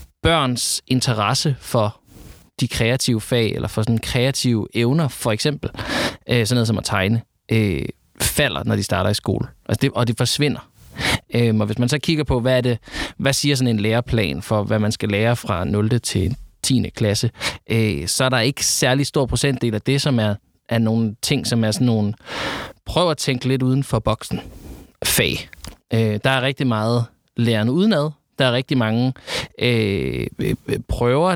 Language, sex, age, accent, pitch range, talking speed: Danish, male, 20-39, native, 110-135 Hz, 170 wpm